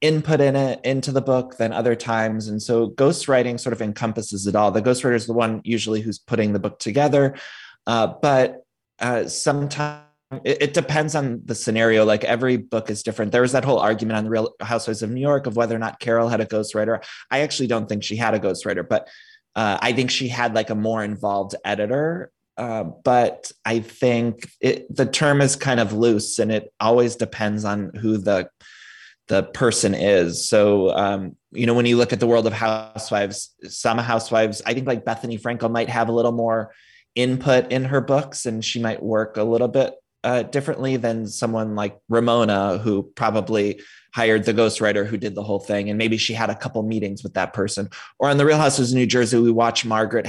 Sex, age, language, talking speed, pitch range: male, 20-39, English, 210 wpm, 105-125 Hz